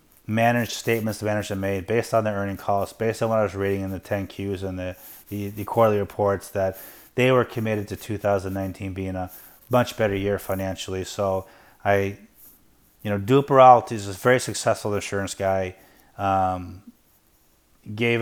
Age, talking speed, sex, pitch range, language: 30-49, 170 wpm, male, 95-115 Hz, English